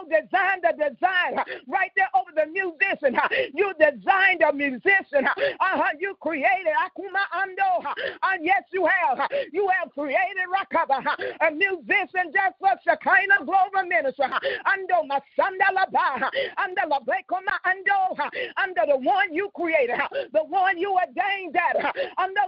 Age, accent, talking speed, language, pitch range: 40-59, American, 120 wpm, English, 310-390 Hz